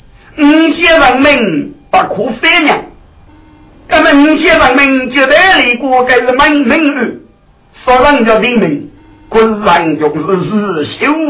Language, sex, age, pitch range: Chinese, male, 50-69, 230-310 Hz